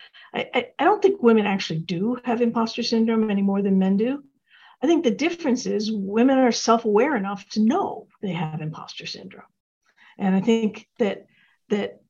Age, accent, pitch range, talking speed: 50-69, American, 195-240 Hz, 175 wpm